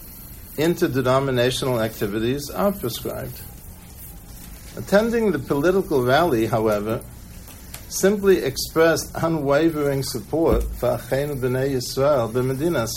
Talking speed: 75 wpm